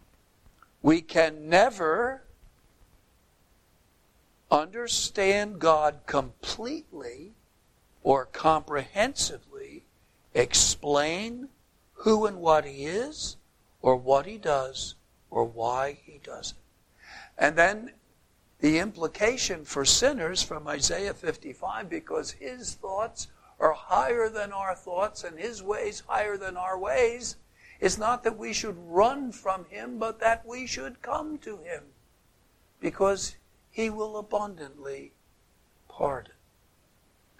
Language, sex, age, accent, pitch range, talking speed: English, male, 60-79, American, 155-230 Hz, 105 wpm